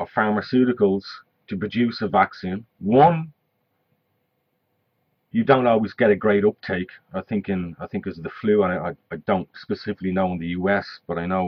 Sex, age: male, 30-49